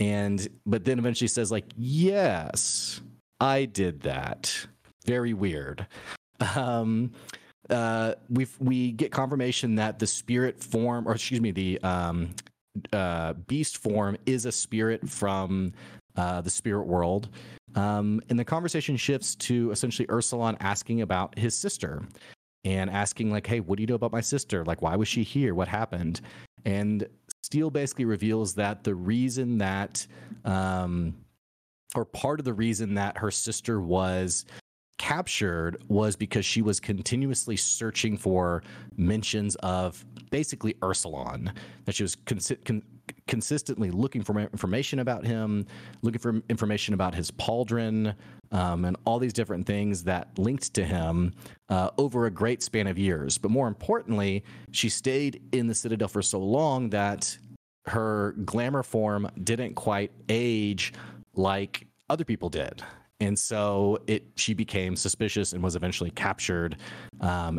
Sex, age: male, 30-49